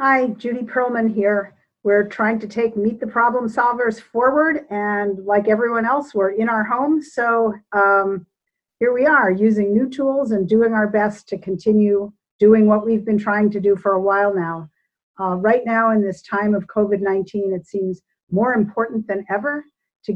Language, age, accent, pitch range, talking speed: English, 50-69, American, 190-225 Hz, 180 wpm